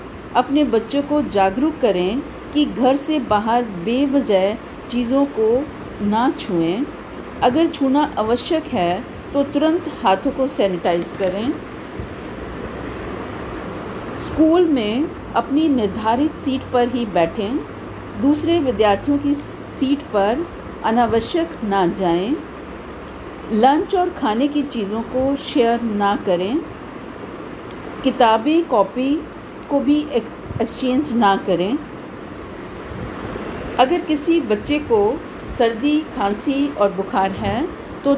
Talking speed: 105 wpm